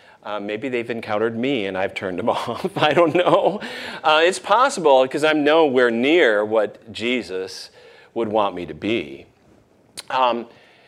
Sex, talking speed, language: male, 155 wpm, English